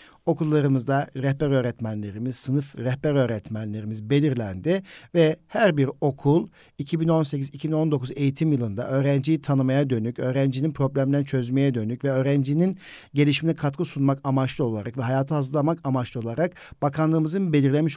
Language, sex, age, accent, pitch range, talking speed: Turkish, male, 60-79, native, 130-160 Hz, 115 wpm